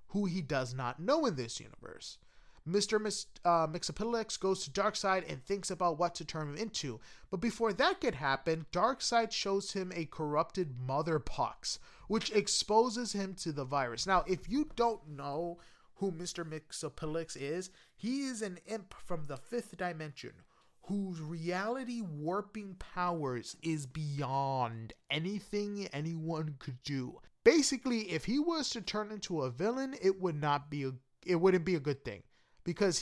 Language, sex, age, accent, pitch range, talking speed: English, male, 30-49, American, 145-210 Hz, 160 wpm